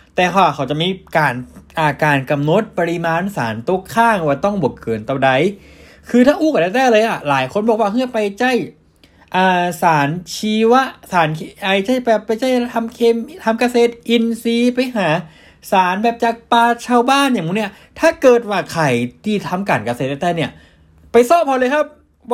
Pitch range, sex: 165-245 Hz, male